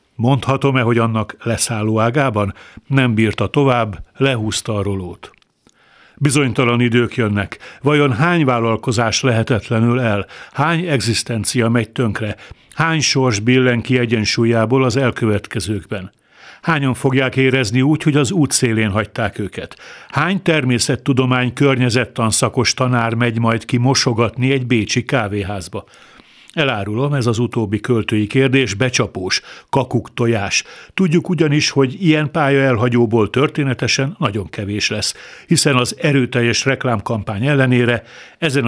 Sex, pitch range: male, 110-135 Hz